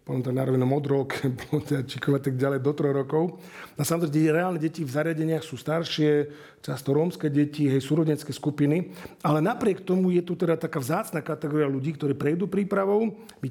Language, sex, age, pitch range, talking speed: Slovak, male, 50-69, 135-160 Hz, 175 wpm